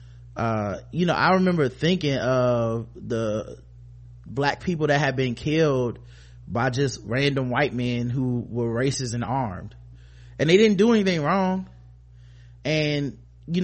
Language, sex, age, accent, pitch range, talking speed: English, male, 20-39, American, 105-155 Hz, 140 wpm